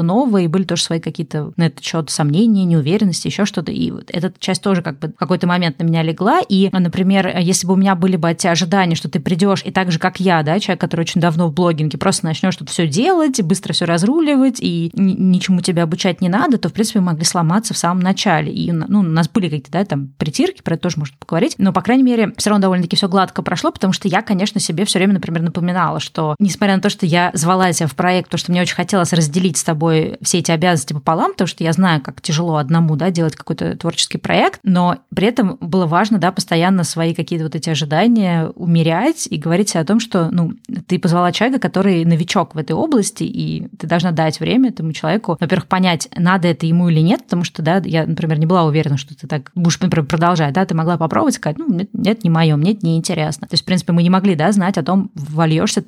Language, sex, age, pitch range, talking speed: Russian, female, 20-39, 165-195 Hz, 235 wpm